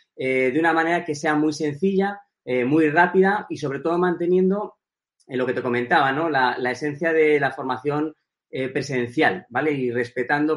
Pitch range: 130-155 Hz